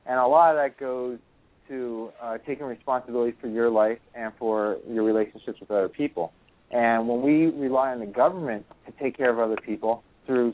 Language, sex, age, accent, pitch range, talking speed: English, male, 30-49, American, 110-125 Hz, 195 wpm